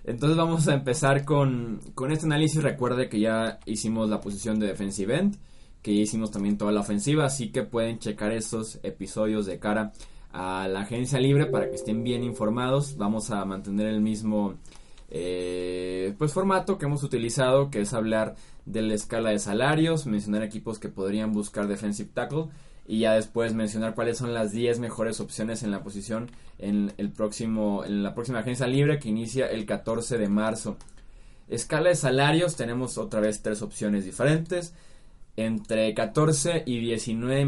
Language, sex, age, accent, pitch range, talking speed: Spanish, male, 20-39, Mexican, 105-125 Hz, 170 wpm